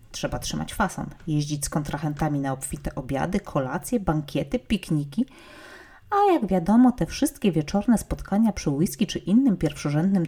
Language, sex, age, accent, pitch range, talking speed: Polish, female, 30-49, native, 150-210 Hz, 140 wpm